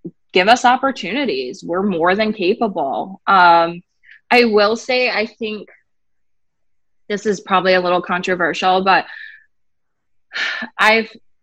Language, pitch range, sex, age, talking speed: English, 180-225 Hz, female, 20-39, 110 wpm